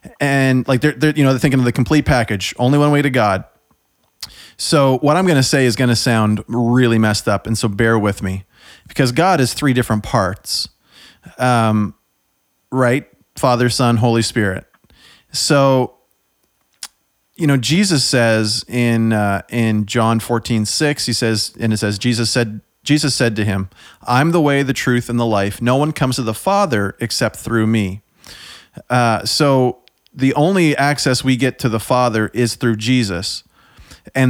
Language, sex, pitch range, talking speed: English, male, 110-135 Hz, 175 wpm